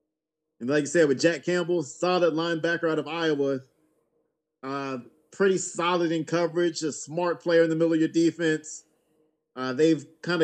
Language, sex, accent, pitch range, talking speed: English, male, American, 140-165 Hz, 165 wpm